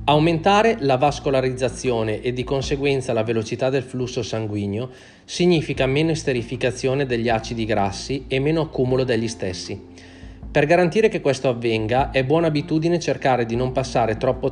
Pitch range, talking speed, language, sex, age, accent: 115-140 Hz, 145 wpm, Italian, male, 30-49, native